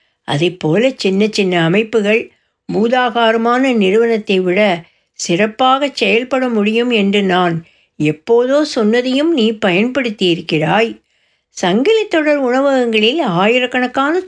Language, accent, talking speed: Tamil, native, 90 wpm